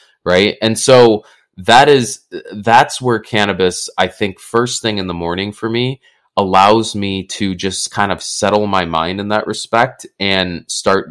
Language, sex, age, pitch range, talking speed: English, male, 20-39, 95-115 Hz, 165 wpm